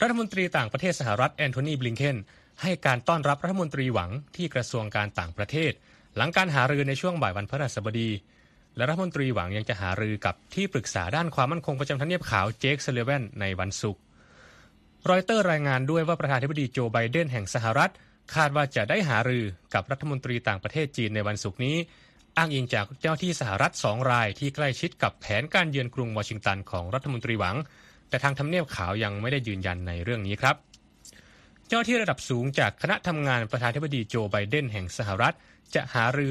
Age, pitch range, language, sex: 20-39, 105-150 Hz, Thai, male